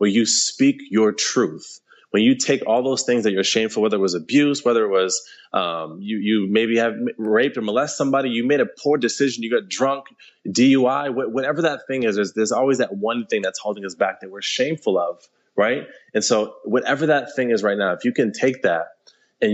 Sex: male